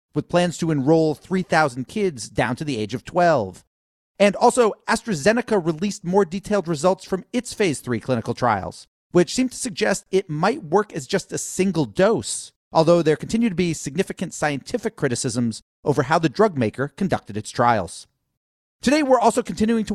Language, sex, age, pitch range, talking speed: English, male, 40-59, 145-205 Hz, 175 wpm